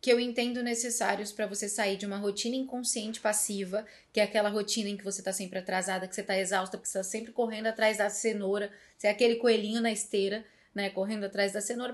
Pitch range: 205-255 Hz